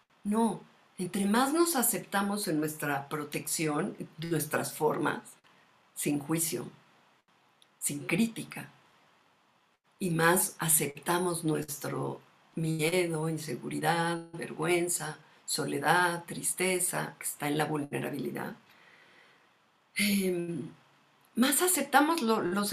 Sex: female